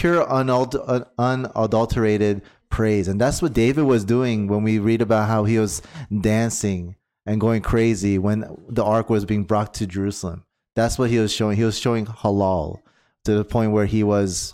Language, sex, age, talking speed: English, male, 30-49, 185 wpm